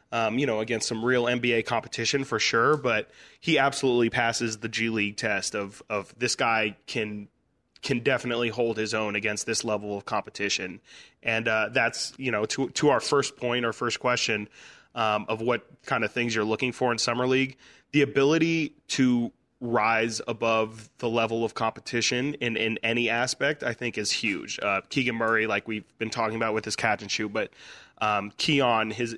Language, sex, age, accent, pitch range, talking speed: English, male, 20-39, American, 110-120 Hz, 190 wpm